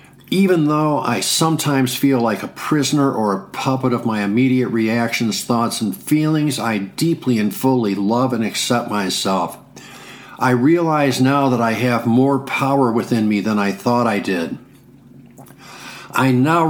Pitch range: 115-140 Hz